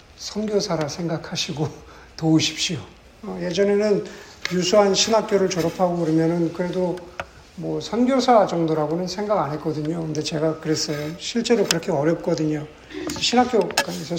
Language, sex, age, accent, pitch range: Korean, male, 50-69, native, 165-210 Hz